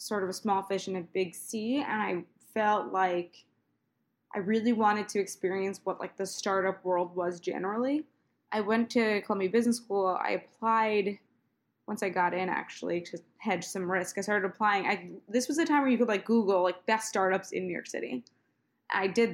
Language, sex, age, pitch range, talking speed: English, female, 20-39, 185-220 Hz, 200 wpm